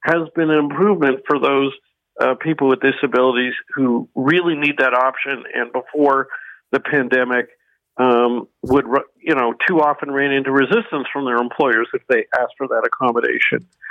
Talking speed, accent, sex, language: 160 wpm, American, male, English